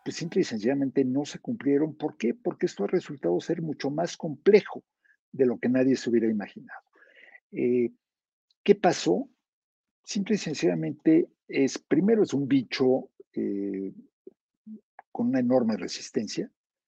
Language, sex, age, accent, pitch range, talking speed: Spanish, male, 50-69, Mexican, 125-175 Hz, 140 wpm